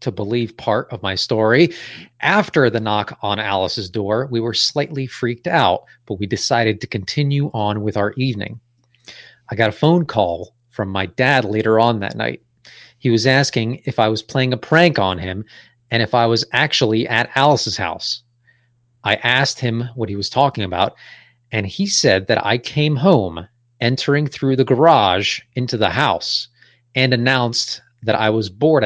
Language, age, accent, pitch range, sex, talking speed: English, 30-49, American, 110-135 Hz, male, 175 wpm